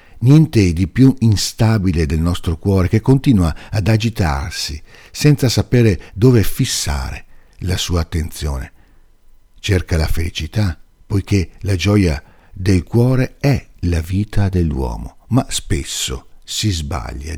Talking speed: 115 wpm